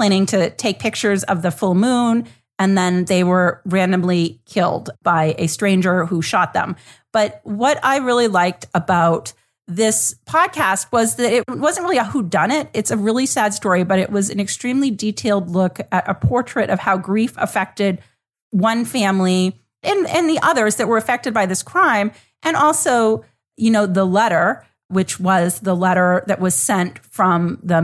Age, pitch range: 40-59, 175-220 Hz